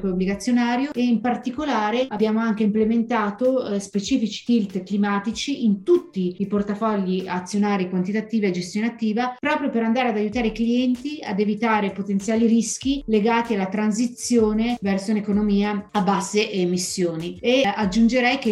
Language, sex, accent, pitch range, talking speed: Italian, female, native, 195-235 Hz, 135 wpm